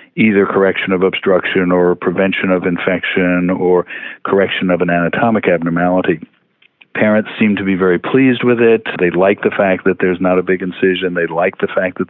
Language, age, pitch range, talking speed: English, 50-69, 90-110 Hz, 185 wpm